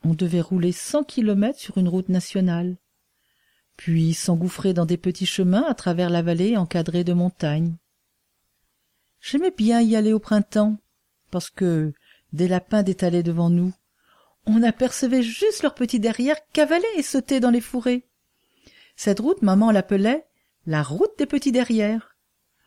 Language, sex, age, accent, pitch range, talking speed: French, female, 50-69, French, 180-225 Hz, 150 wpm